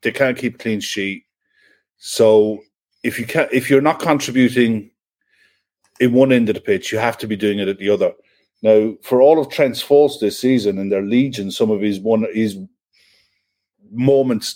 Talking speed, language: 185 wpm, English